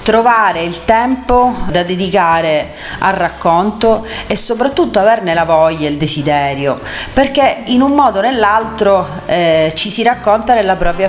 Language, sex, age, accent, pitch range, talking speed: Italian, female, 30-49, native, 170-220 Hz, 145 wpm